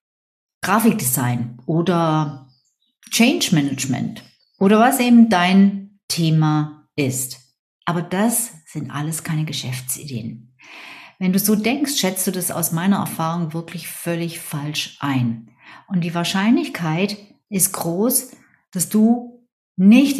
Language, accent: German, German